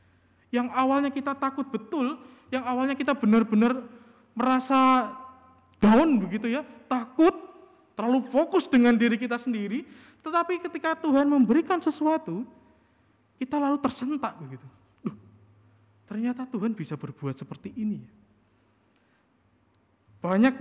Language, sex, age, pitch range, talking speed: Indonesian, male, 20-39, 155-260 Hz, 110 wpm